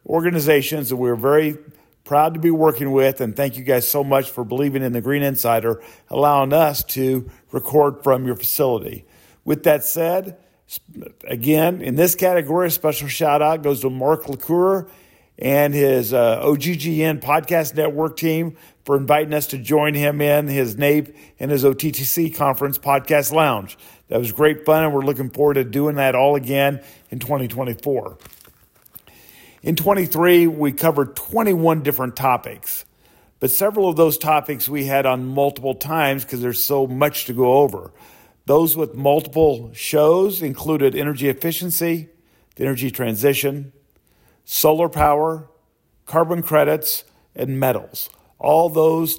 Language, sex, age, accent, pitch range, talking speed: English, male, 50-69, American, 135-160 Hz, 150 wpm